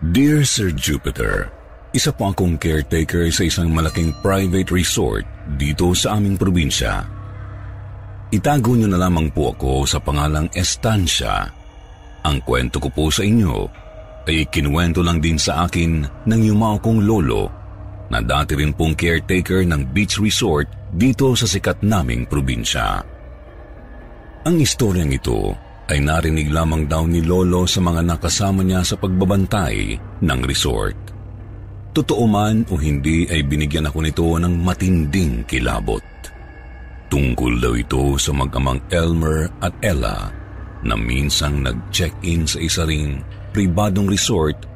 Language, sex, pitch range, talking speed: Filipino, male, 75-100 Hz, 130 wpm